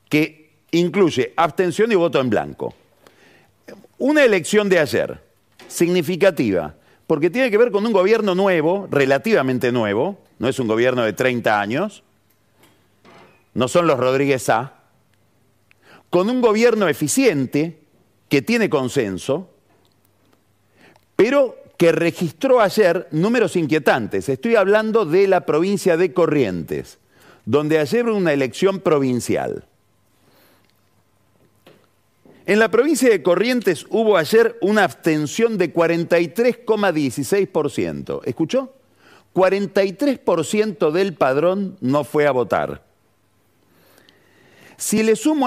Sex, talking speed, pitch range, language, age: male, 110 wpm, 145-210 Hz, Spanish, 40-59